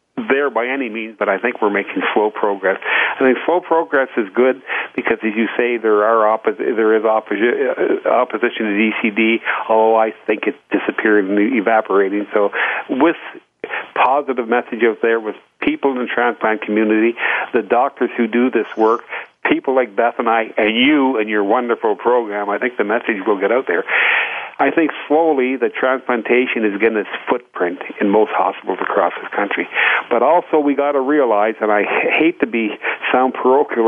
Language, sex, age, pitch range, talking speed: English, male, 50-69, 110-135 Hz, 180 wpm